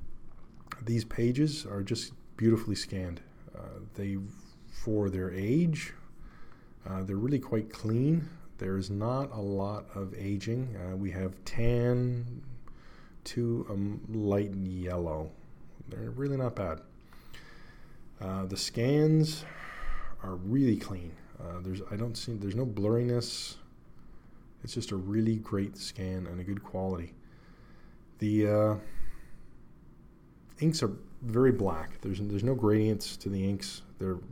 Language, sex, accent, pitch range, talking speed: English, male, American, 95-115 Hz, 130 wpm